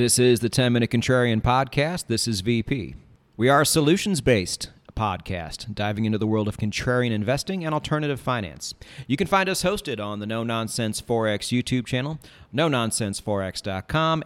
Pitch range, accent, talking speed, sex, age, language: 105-130 Hz, American, 155 wpm, male, 40-59, English